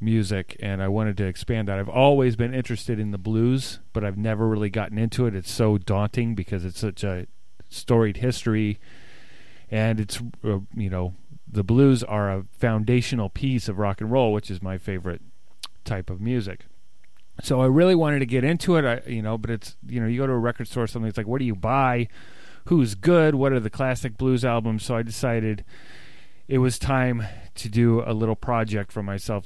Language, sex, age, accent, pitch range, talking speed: English, male, 30-49, American, 100-120 Hz, 210 wpm